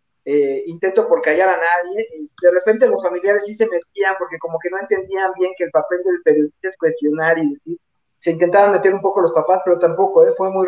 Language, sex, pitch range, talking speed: Spanish, male, 170-215 Hz, 230 wpm